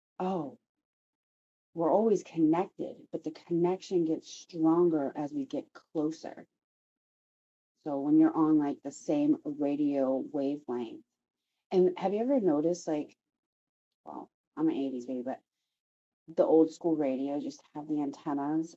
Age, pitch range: 30-49, 145-170 Hz